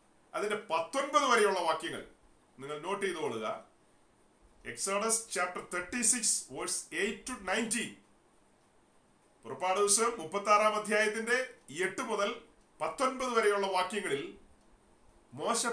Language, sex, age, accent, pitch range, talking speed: Malayalam, male, 40-59, native, 195-235 Hz, 75 wpm